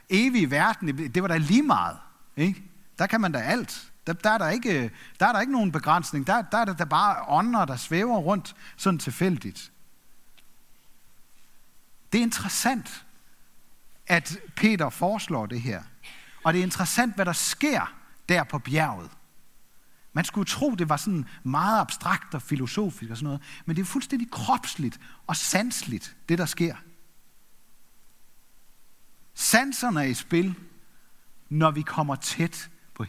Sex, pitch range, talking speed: male, 150-205 Hz, 155 wpm